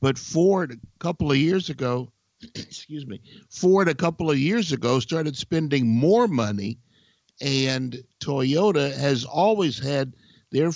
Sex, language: male, English